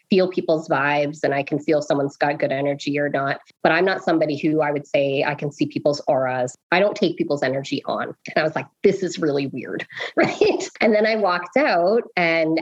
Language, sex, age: English, female, 20-39